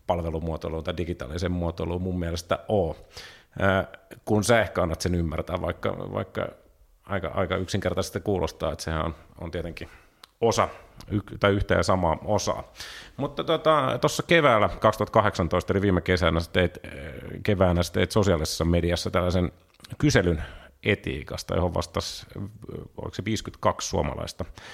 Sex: male